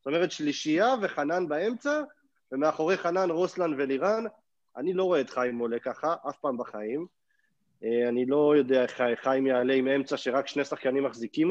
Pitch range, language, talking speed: 135-185 Hz, Hebrew, 160 wpm